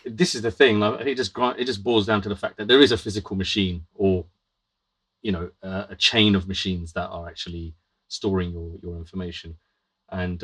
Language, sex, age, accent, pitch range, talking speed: English, male, 30-49, British, 90-105 Hz, 200 wpm